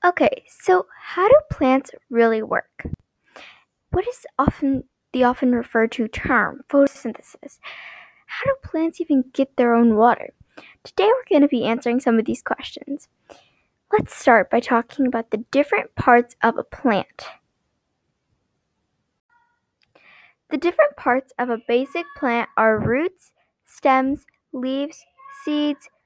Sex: female